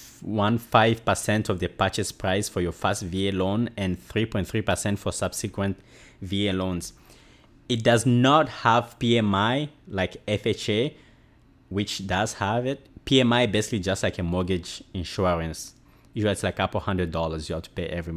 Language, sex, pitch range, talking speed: English, male, 95-120 Hz, 160 wpm